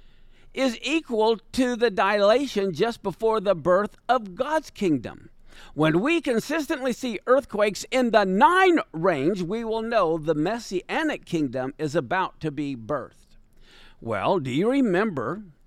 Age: 50-69